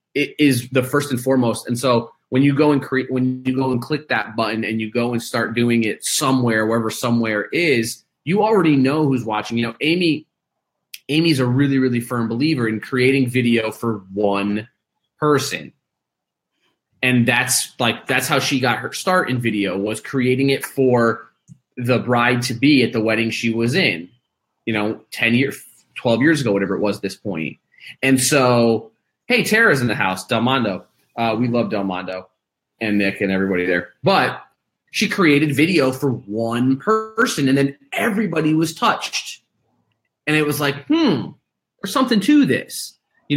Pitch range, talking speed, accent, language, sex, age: 115-155 Hz, 180 wpm, American, English, male, 30-49